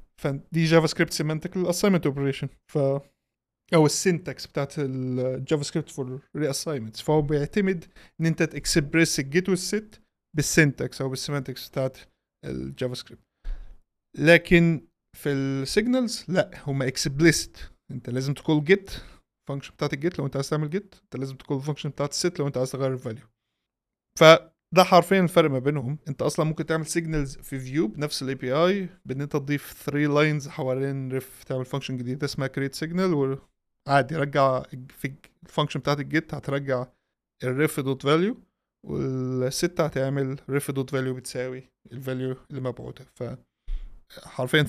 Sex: male